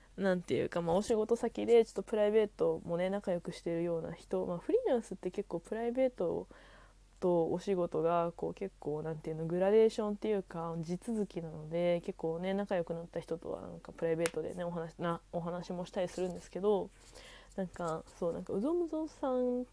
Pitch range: 170-220 Hz